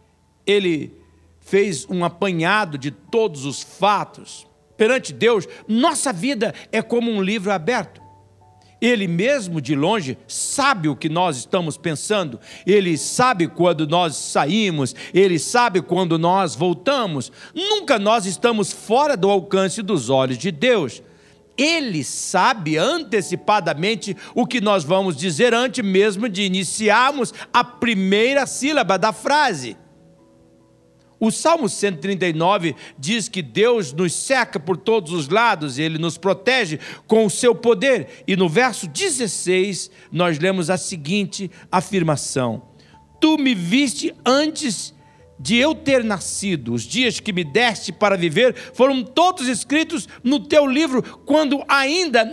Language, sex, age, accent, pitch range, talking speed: Portuguese, male, 60-79, Brazilian, 165-240 Hz, 130 wpm